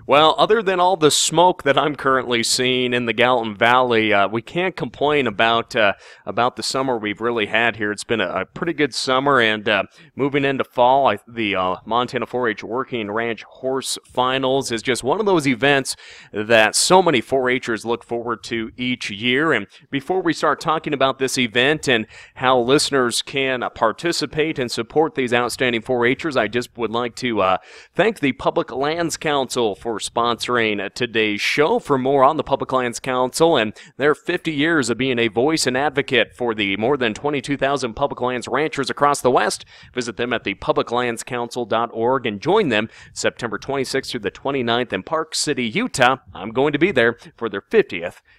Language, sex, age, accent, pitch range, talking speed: English, male, 30-49, American, 115-140 Hz, 185 wpm